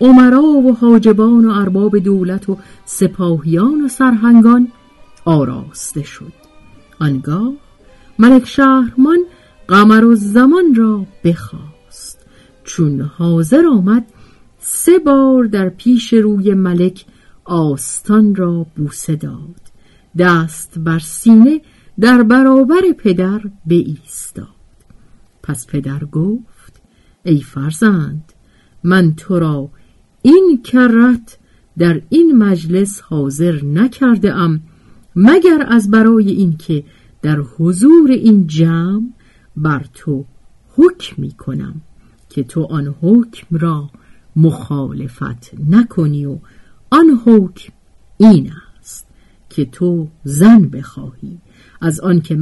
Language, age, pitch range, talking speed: Persian, 50-69, 155-235 Hz, 100 wpm